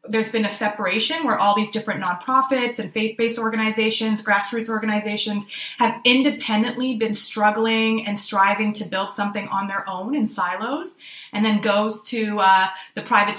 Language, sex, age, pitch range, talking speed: English, female, 20-39, 200-235 Hz, 155 wpm